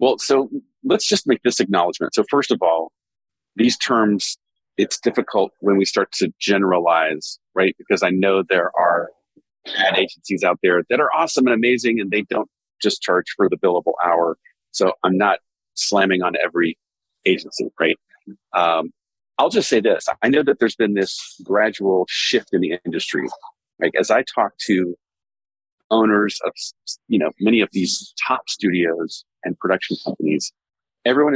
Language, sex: English, male